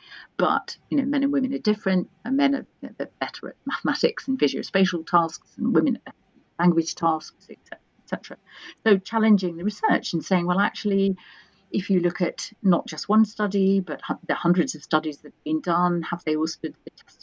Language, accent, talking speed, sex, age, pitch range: English, British, 200 wpm, female, 50-69, 160-230 Hz